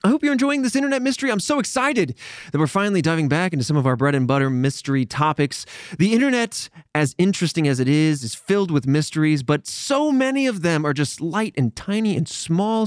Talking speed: 220 wpm